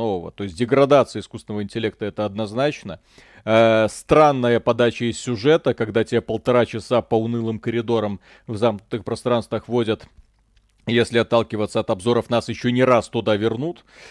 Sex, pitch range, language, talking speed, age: male, 105-125 Hz, Russian, 145 wpm, 40-59